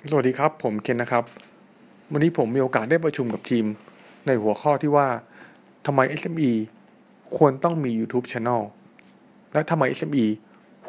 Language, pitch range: Thai, 115-150 Hz